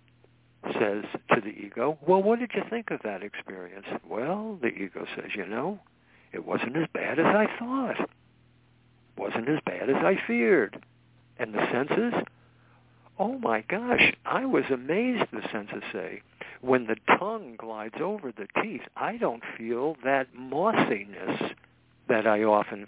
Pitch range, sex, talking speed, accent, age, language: 115-185 Hz, male, 155 wpm, American, 60-79, English